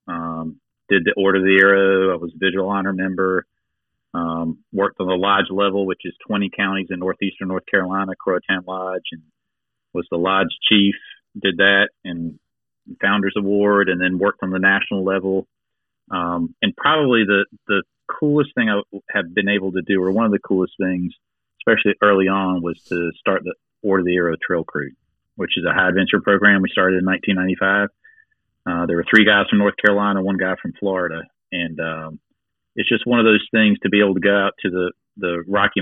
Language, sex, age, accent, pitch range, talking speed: English, male, 40-59, American, 90-100 Hz, 200 wpm